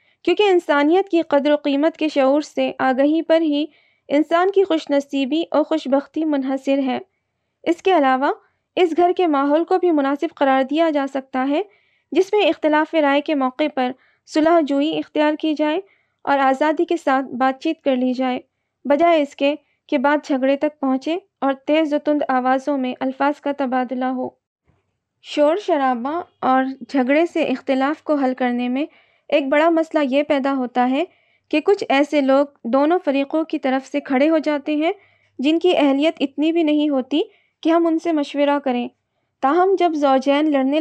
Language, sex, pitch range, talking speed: Urdu, female, 270-320 Hz, 180 wpm